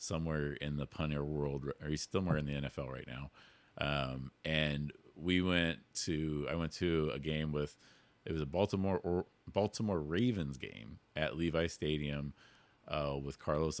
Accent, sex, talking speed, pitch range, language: American, male, 170 wpm, 75-85 Hz, English